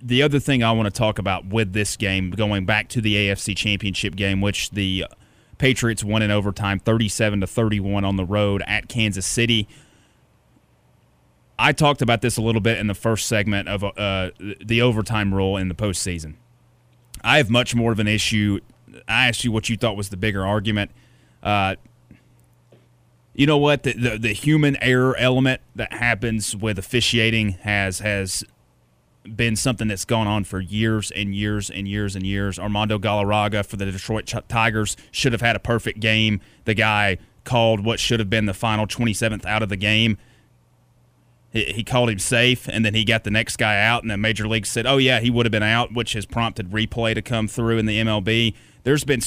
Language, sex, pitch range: English, male, 100-120 Hz